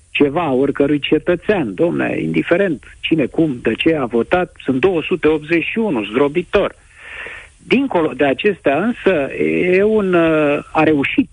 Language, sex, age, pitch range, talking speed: Romanian, male, 50-69, 125-165 Hz, 115 wpm